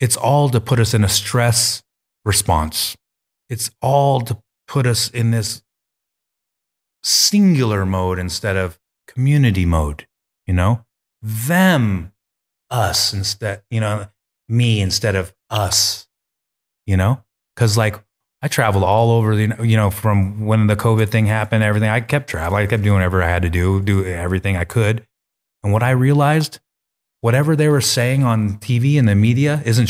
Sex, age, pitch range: male, 30-49, 100-125 Hz